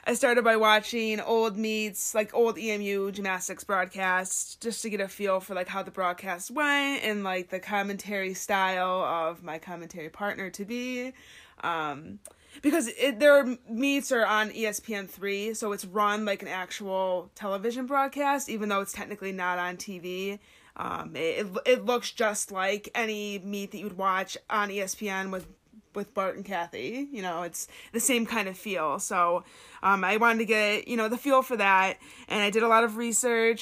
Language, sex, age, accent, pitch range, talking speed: English, female, 20-39, American, 185-225 Hz, 180 wpm